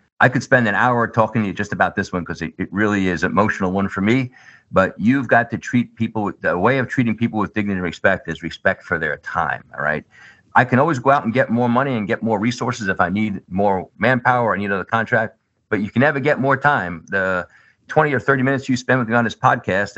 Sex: male